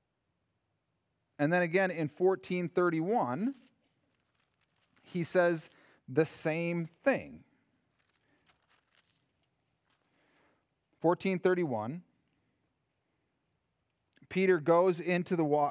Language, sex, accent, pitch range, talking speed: English, male, American, 135-175 Hz, 75 wpm